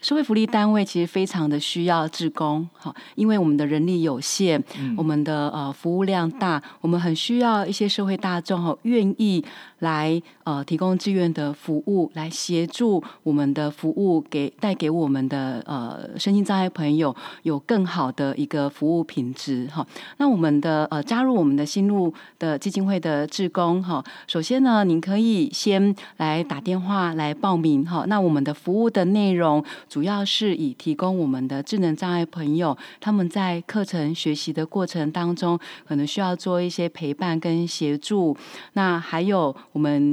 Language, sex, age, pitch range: Chinese, female, 30-49, 155-195 Hz